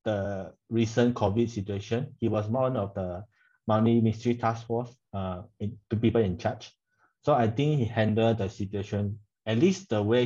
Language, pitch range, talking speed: English, 100-120 Hz, 170 wpm